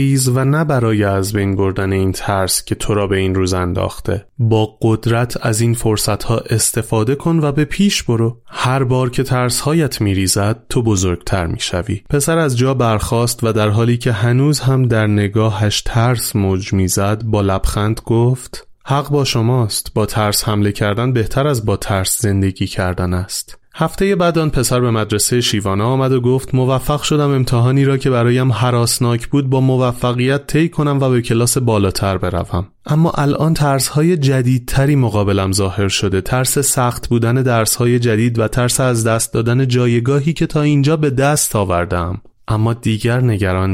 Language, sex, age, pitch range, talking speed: Persian, male, 30-49, 105-130 Hz, 170 wpm